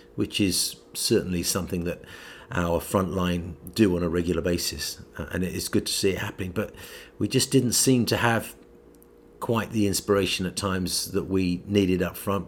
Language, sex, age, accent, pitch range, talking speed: English, male, 40-59, British, 80-95 Hz, 180 wpm